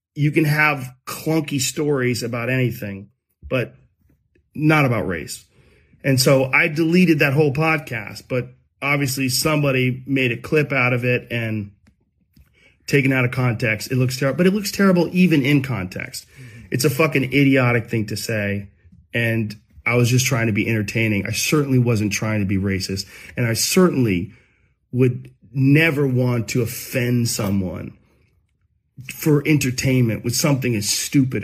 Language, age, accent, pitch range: English, 40-59, American, 110-135 Hz